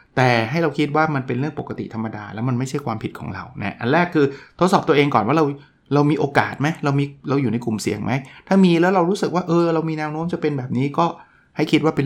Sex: male